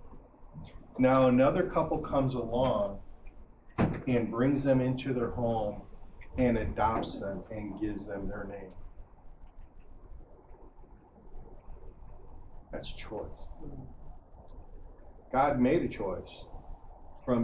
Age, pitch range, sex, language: 50-69, 100-155 Hz, male, English